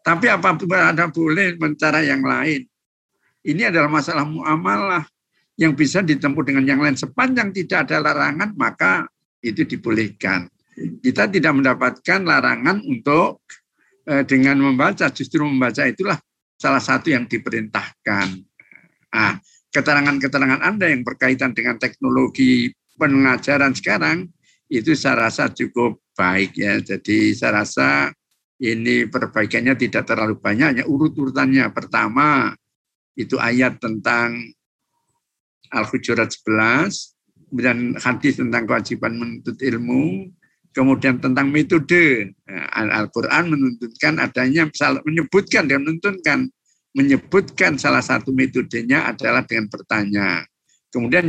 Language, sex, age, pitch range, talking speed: Indonesian, male, 50-69, 120-165 Hz, 110 wpm